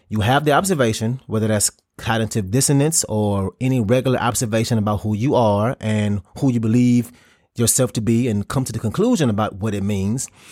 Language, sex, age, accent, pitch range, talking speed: English, male, 30-49, American, 105-135 Hz, 185 wpm